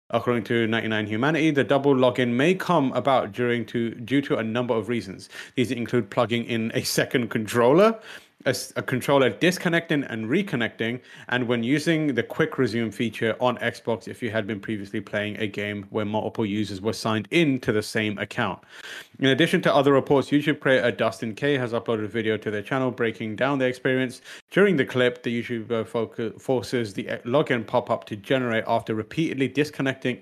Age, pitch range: 30-49, 110-135 Hz